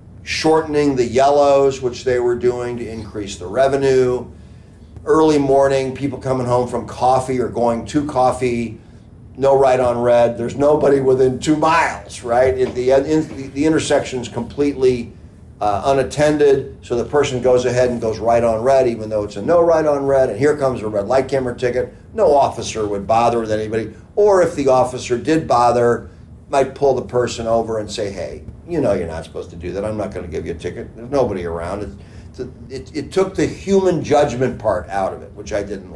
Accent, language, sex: American, English, male